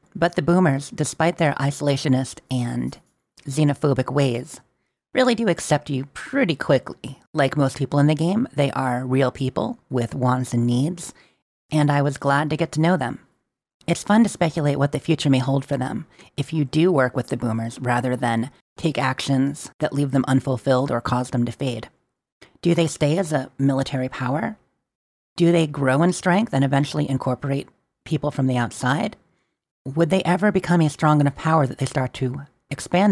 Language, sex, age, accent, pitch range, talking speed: English, female, 40-59, American, 130-160 Hz, 185 wpm